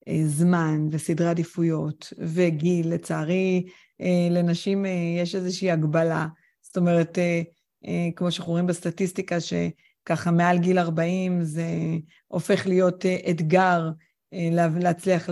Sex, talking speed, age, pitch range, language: female, 95 wpm, 30-49, 170-205 Hz, Hebrew